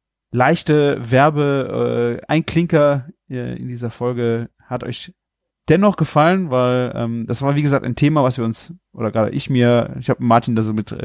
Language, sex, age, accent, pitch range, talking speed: German, male, 30-49, German, 115-145 Hz, 160 wpm